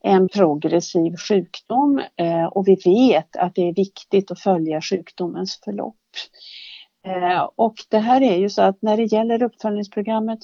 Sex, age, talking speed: female, 60-79, 145 wpm